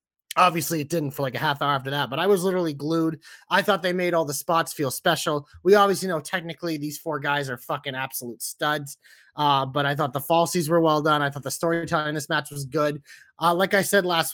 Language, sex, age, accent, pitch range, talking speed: English, male, 30-49, American, 145-190 Hz, 245 wpm